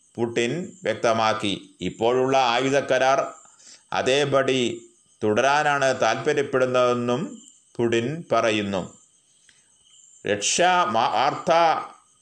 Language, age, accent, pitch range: Malayalam, 30-49, native, 120-150 Hz